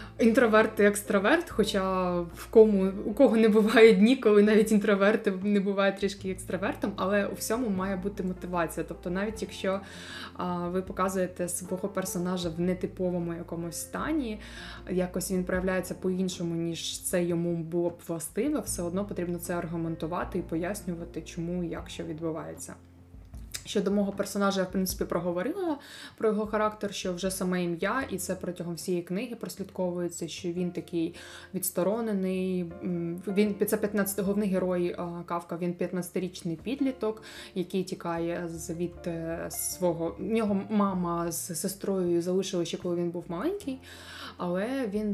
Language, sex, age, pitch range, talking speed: Ukrainian, female, 20-39, 170-205 Hz, 140 wpm